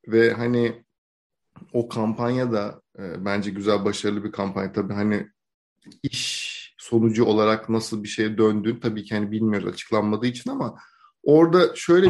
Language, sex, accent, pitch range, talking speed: Turkish, male, native, 110-140 Hz, 140 wpm